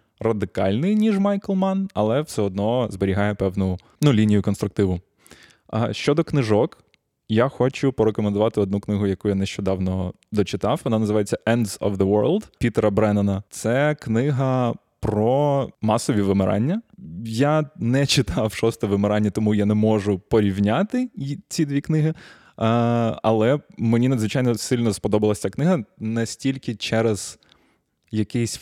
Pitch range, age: 100-130 Hz, 20-39